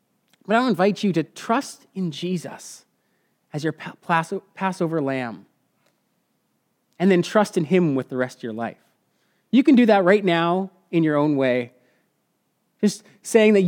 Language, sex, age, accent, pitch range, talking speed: English, male, 30-49, American, 155-210 Hz, 160 wpm